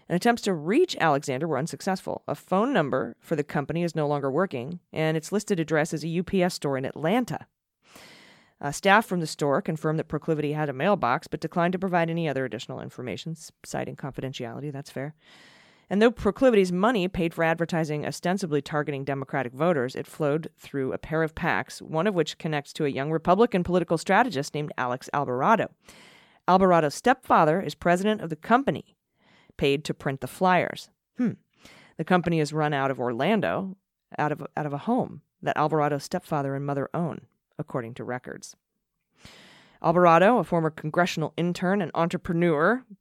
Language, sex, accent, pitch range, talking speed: English, female, American, 145-180 Hz, 170 wpm